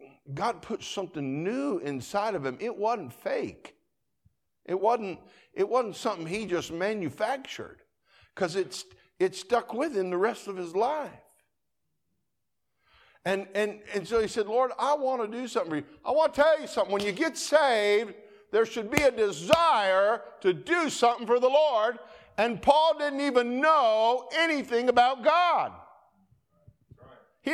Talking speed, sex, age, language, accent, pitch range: 160 wpm, male, 50-69, English, American, 175-290 Hz